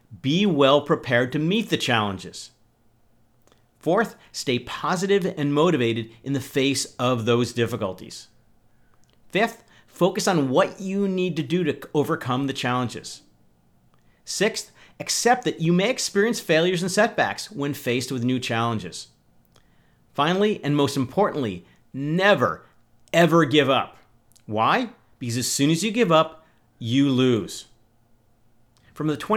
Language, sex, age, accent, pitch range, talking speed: English, male, 40-59, American, 115-160 Hz, 130 wpm